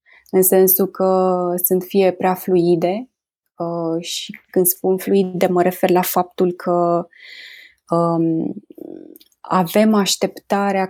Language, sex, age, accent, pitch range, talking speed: Romanian, female, 20-39, native, 170-200 Hz, 100 wpm